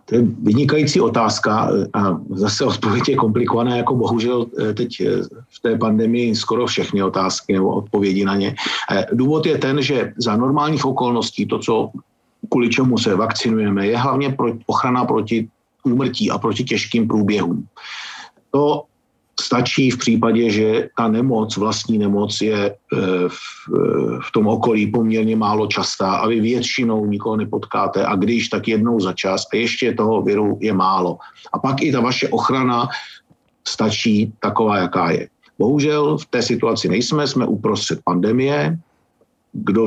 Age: 50-69